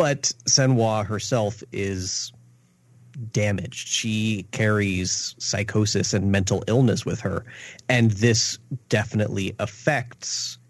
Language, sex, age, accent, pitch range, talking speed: English, male, 30-49, American, 100-125 Hz, 95 wpm